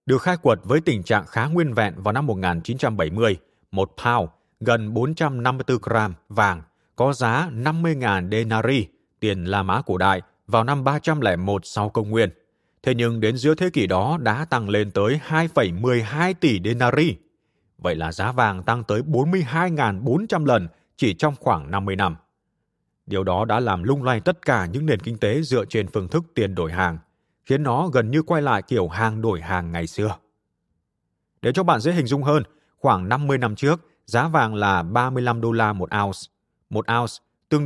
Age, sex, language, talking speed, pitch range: 20-39, male, Vietnamese, 180 wpm, 105-140 Hz